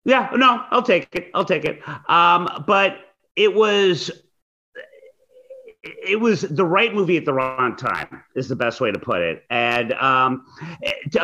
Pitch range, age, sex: 130-200 Hz, 30-49, male